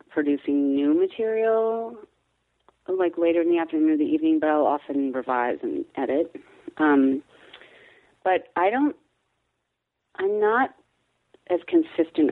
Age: 30-49